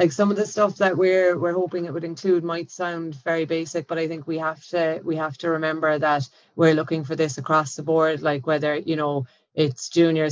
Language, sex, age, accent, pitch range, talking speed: English, female, 30-49, Irish, 145-160 Hz, 235 wpm